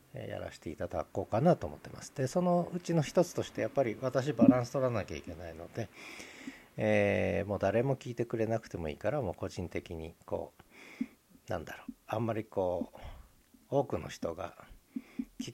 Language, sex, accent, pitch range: Japanese, male, native, 95-125 Hz